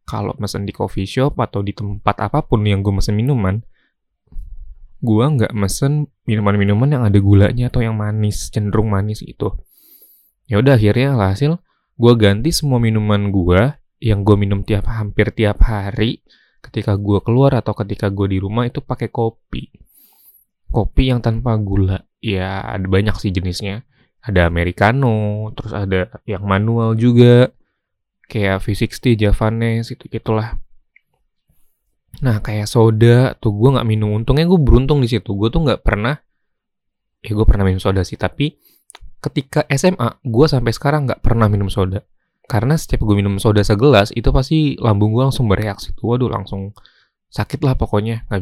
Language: Indonesian